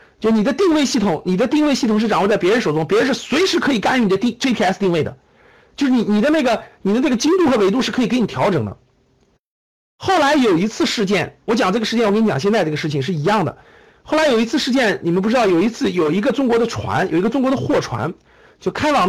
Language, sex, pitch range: Chinese, male, 200-285 Hz